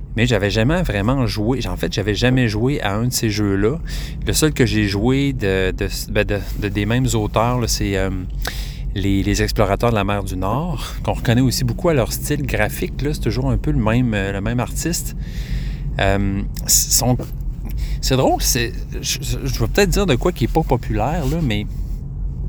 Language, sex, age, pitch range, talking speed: French, male, 30-49, 105-135 Hz, 205 wpm